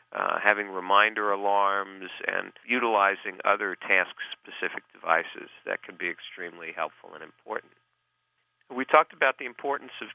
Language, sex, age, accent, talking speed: English, male, 50-69, American, 130 wpm